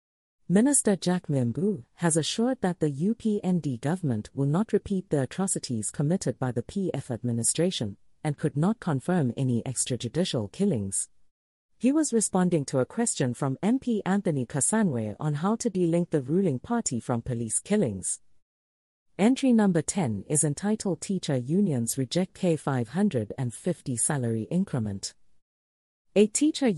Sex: female